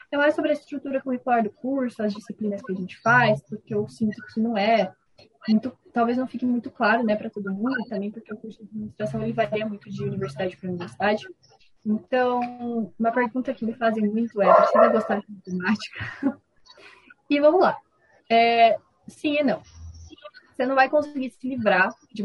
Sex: female